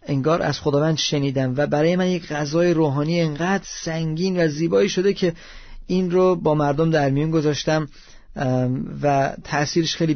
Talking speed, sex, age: 155 wpm, male, 40-59